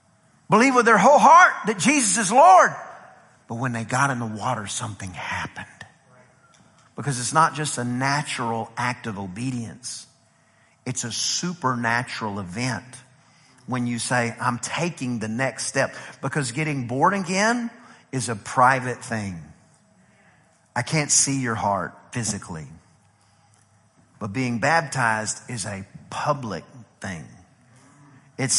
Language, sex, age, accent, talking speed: English, male, 50-69, American, 130 wpm